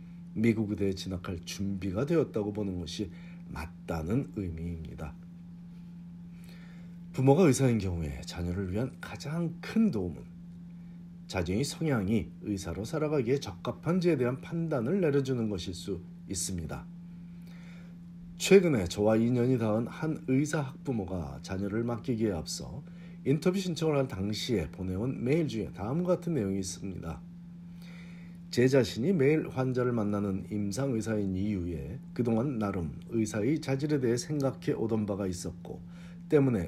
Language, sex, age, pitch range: Korean, male, 40-59, 95-155 Hz